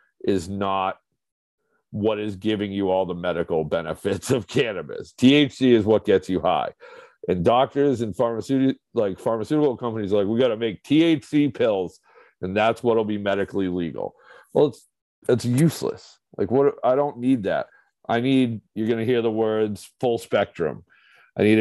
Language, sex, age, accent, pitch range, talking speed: English, male, 40-59, American, 100-125 Hz, 165 wpm